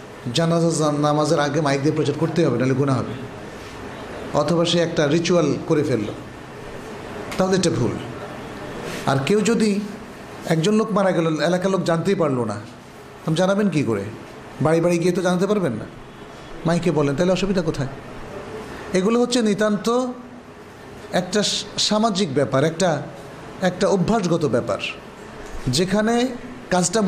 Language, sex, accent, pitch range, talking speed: Bengali, male, native, 145-195 Hz, 130 wpm